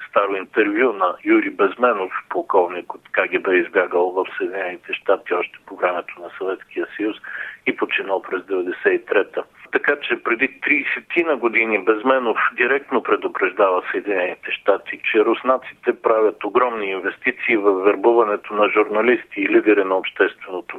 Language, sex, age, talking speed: Bulgarian, male, 50-69, 130 wpm